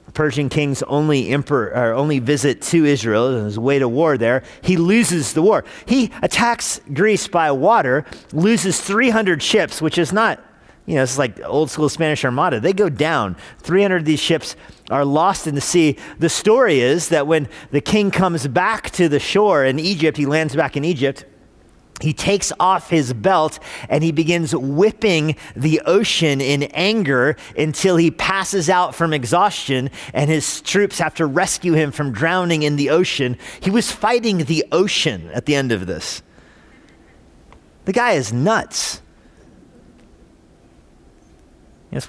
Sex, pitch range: male, 135-180 Hz